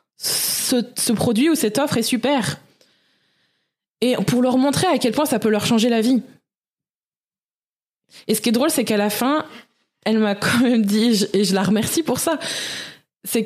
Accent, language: French, French